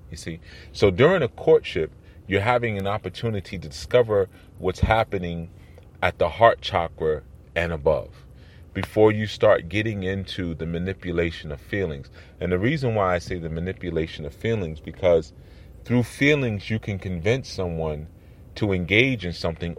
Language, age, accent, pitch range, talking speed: English, 30-49, American, 85-105 Hz, 150 wpm